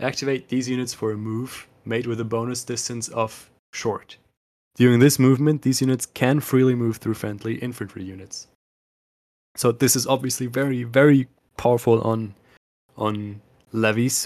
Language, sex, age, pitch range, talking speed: English, male, 20-39, 110-125 Hz, 145 wpm